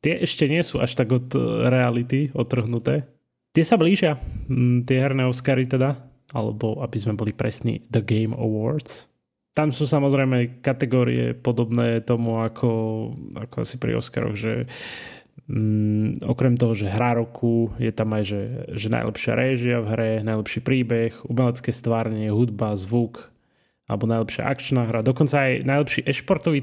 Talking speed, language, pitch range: 145 wpm, Slovak, 115-130 Hz